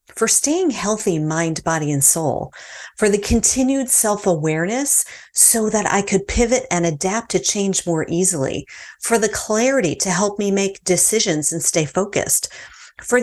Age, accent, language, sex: 40-59, American, English, female